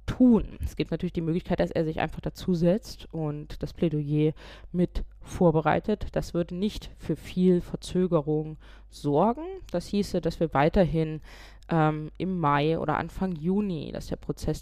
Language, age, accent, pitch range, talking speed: German, 20-39, German, 160-190 Hz, 150 wpm